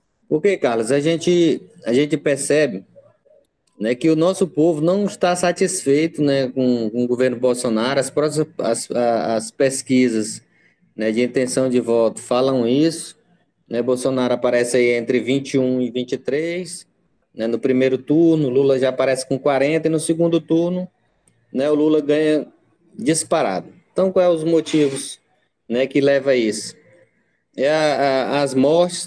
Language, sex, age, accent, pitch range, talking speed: Portuguese, male, 20-39, Brazilian, 130-155 Hz, 140 wpm